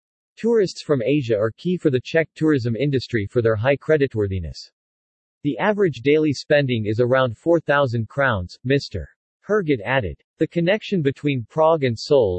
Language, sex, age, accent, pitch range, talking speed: English, male, 40-59, American, 120-155 Hz, 150 wpm